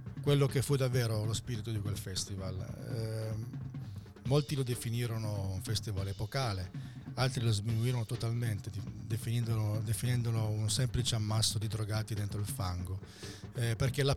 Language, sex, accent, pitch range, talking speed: Italian, male, native, 105-125 Hz, 135 wpm